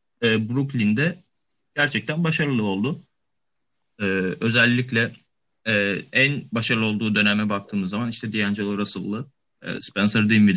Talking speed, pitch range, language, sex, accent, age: 110 wpm, 105-130 Hz, Turkish, male, native, 30-49